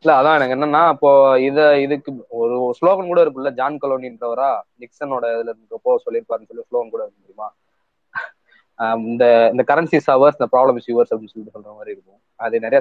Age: 20-39